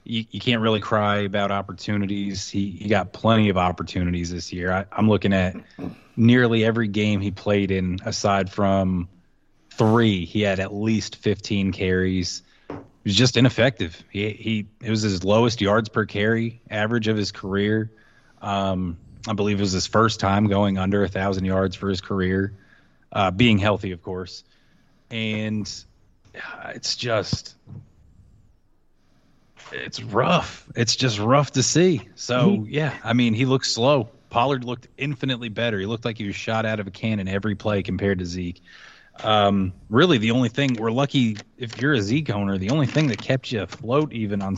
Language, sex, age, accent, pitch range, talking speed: English, male, 20-39, American, 100-120 Hz, 170 wpm